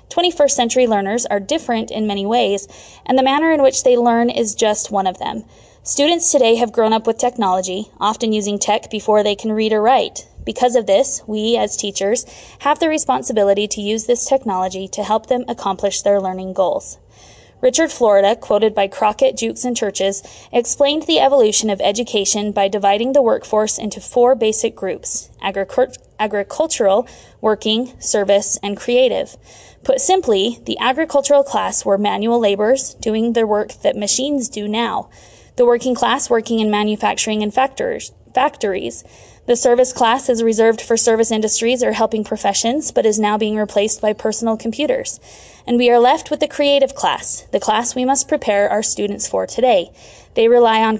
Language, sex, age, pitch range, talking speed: English, female, 20-39, 210-255 Hz, 170 wpm